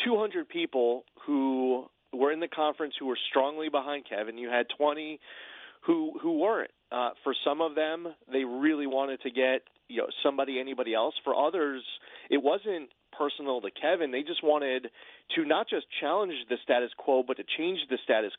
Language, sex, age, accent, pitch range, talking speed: English, male, 30-49, American, 135-195 Hz, 180 wpm